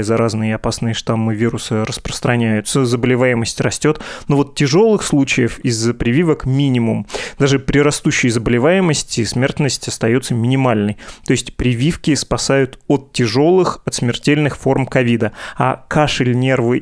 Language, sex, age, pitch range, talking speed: Russian, male, 20-39, 120-140 Hz, 120 wpm